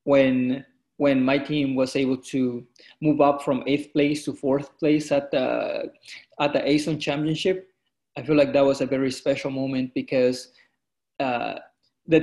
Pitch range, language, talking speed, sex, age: 130-145 Hz, English, 160 wpm, male, 20-39